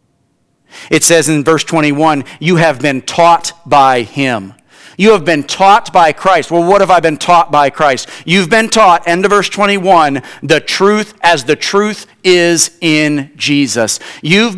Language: English